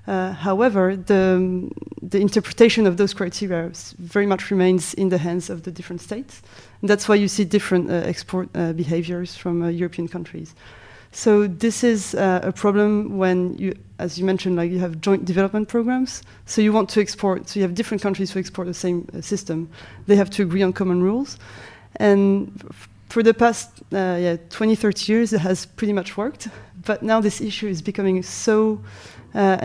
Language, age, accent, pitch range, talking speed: English, 30-49, French, 180-205 Hz, 195 wpm